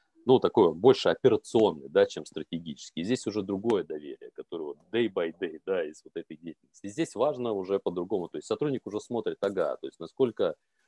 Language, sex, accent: Russian, male, native